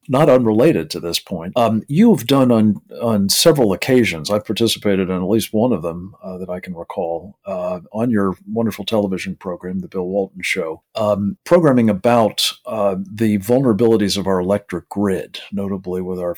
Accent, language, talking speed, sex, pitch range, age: American, English, 175 wpm, male, 95-120 Hz, 50-69